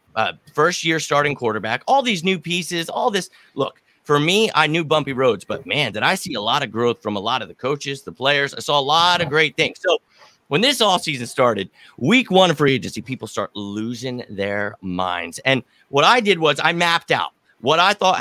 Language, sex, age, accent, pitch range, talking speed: English, male, 30-49, American, 130-175 Hz, 230 wpm